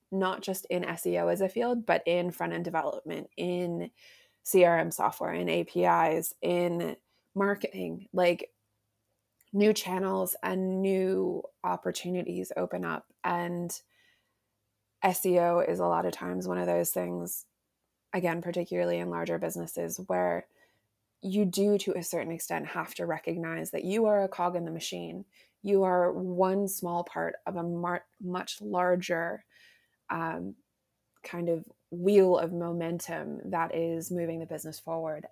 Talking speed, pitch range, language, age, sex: 140 wpm, 130-180 Hz, English, 20-39, female